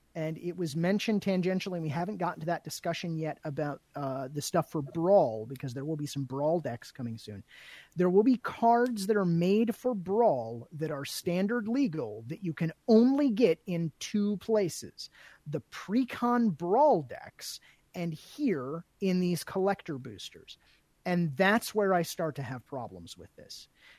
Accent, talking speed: American, 175 wpm